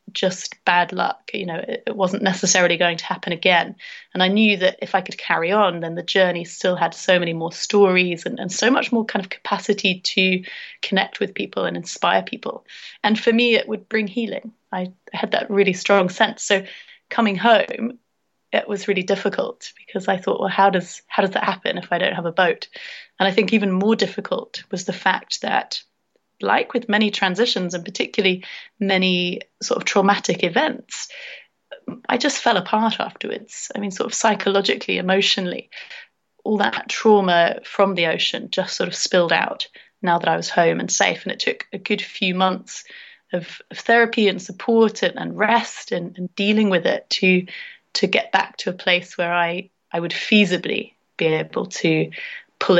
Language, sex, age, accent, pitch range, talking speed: English, female, 30-49, British, 180-220 Hz, 190 wpm